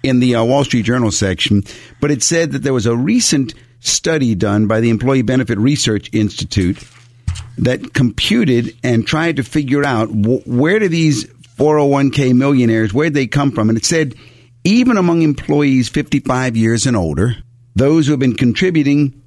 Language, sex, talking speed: English, male, 170 wpm